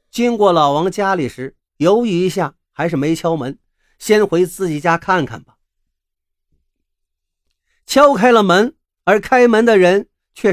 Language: Chinese